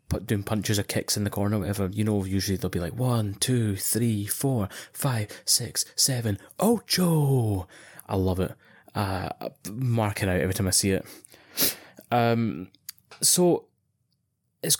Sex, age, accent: male, 20-39, British